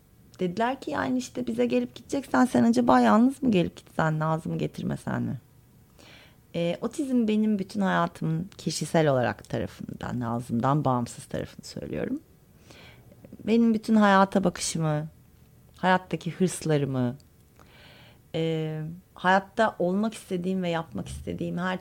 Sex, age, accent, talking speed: female, 30-49, native, 115 wpm